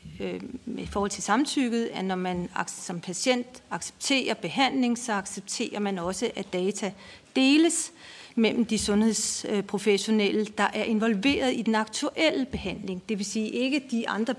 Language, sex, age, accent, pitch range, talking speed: Danish, female, 40-59, native, 190-230 Hz, 140 wpm